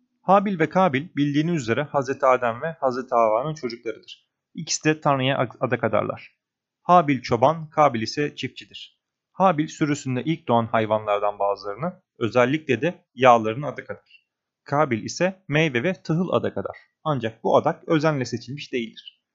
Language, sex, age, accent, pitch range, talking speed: Turkish, male, 30-49, native, 115-155 Hz, 140 wpm